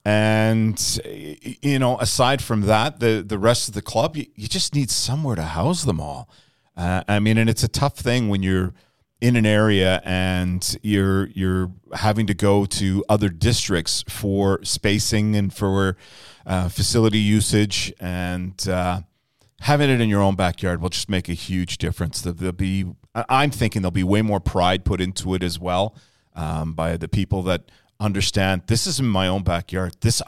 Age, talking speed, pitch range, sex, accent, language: 40-59, 180 wpm, 90-115 Hz, male, American, English